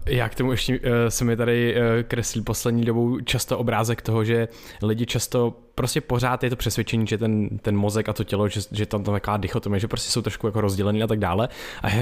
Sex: male